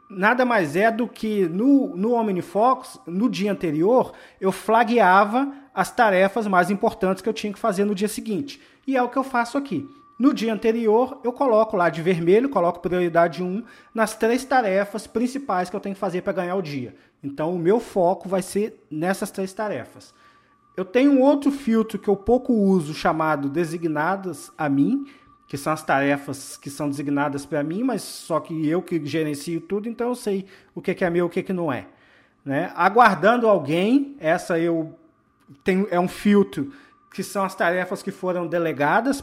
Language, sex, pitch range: Portuguese, male, 170-235 Hz